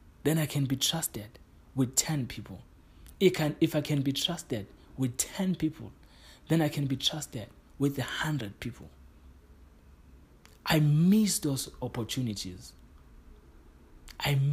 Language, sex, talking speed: English, male, 120 wpm